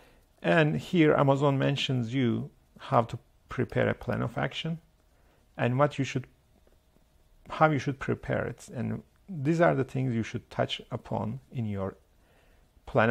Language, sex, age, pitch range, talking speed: English, male, 50-69, 105-135 Hz, 150 wpm